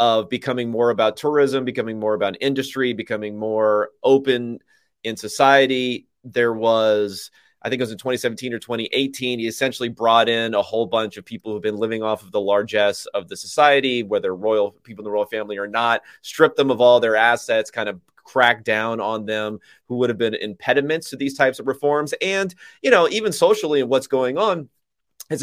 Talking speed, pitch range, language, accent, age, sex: 200 wpm, 110-135 Hz, English, American, 30-49, male